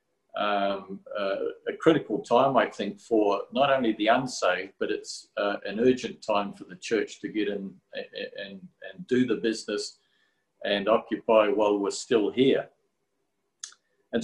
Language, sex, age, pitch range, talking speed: English, male, 50-69, 110-150 Hz, 155 wpm